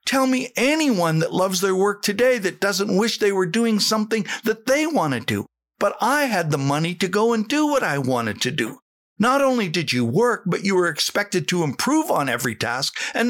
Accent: American